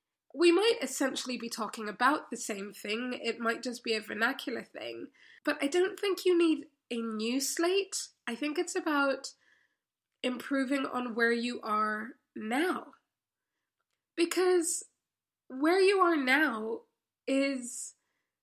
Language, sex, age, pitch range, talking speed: English, female, 20-39, 235-305 Hz, 135 wpm